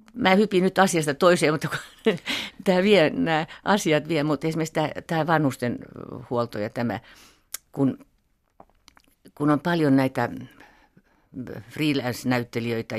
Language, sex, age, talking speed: Finnish, female, 50-69, 95 wpm